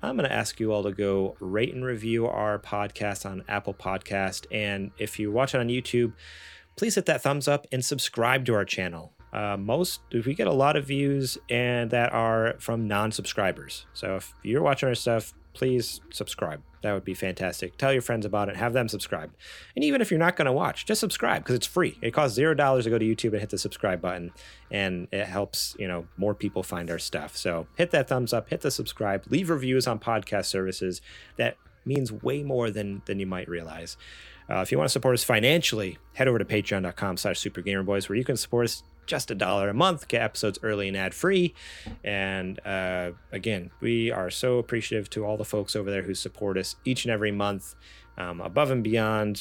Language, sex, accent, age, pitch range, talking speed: English, male, American, 30-49, 95-125 Hz, 210 wpm